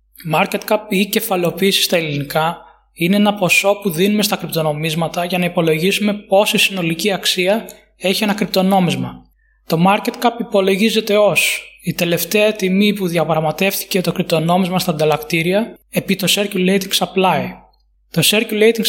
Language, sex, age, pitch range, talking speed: Greek, male, 20-39, 180-210 Hz, 125 wpm